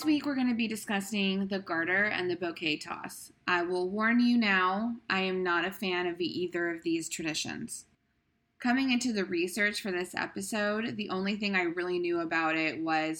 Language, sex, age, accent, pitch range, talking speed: English, female, 20-39, American, 165-200 Hz, 200 wpm